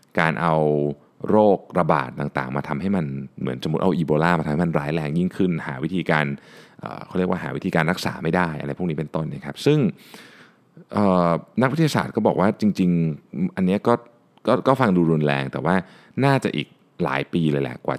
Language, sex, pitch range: Thai, male, 75-105 Hz